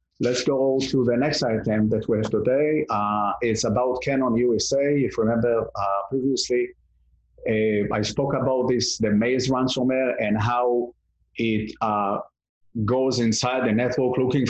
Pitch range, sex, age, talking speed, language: 110-135 Hz, male, 30-49, 155 wpm, English